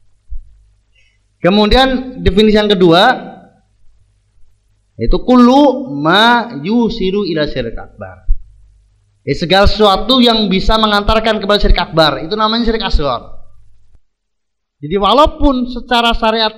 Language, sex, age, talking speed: Malay, male, 30-49, 100 wpm